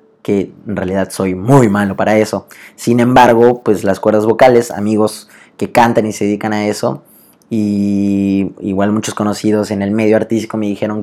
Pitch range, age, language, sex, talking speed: 100-115 Hz, 20-39, Spanish, male, 175 wpm